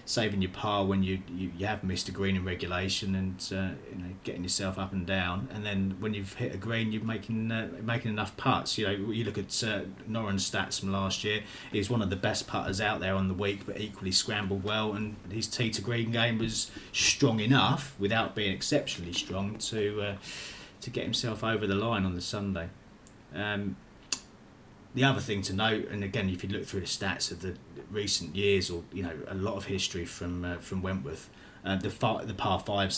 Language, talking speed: English, 220 wpm